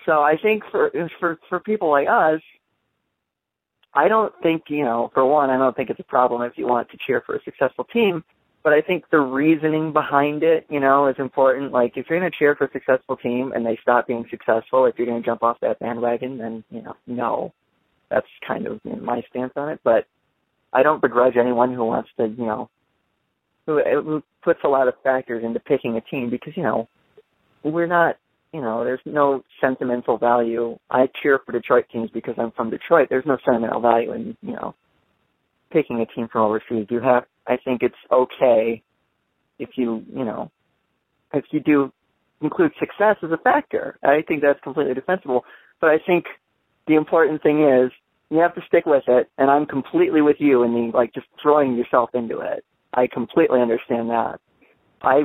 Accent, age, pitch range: American, 30-49, 120-155 Hz